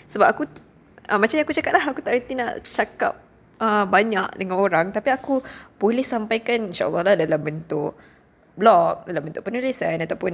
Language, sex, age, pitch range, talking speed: Malay, female, 20-39, 170-215 Hz, 175 wpm